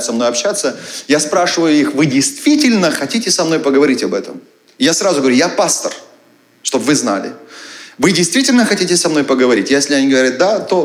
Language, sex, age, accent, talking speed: Russian, male, 30-49, native, 185 wpm